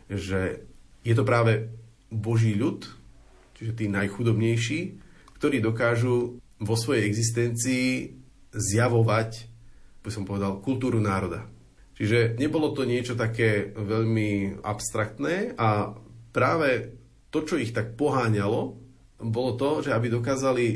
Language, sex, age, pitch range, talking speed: Slovak, male, 30-49, 105-120 Hz, 115 wpm